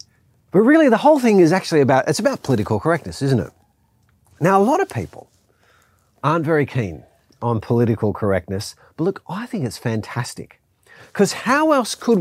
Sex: male